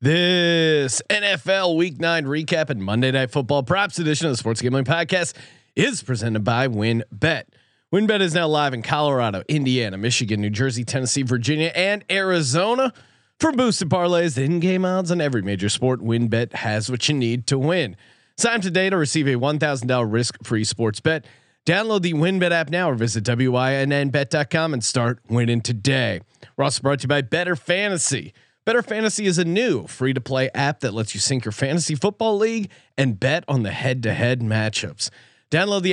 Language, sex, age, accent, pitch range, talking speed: English, male, 30-49, American, 125-170 Hz, 180 wpm